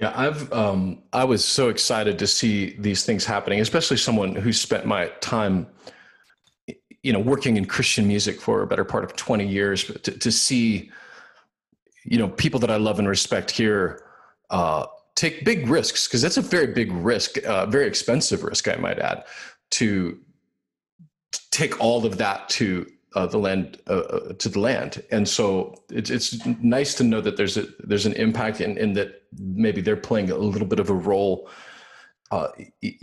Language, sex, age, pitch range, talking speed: English, male, 40-59, 100-130 Hz, 180 wpm